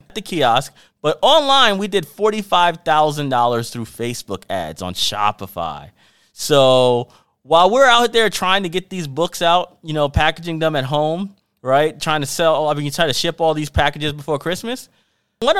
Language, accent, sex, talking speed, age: English, American, male, 175 wpm, 30-49